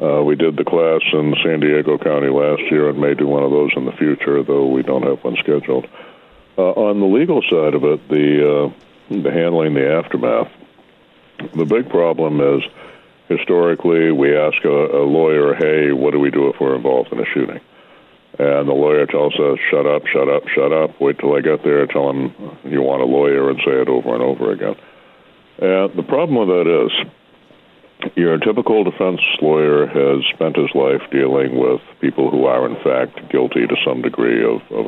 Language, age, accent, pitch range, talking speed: English, 60-79, American, 70-80 Hz, 200 wpm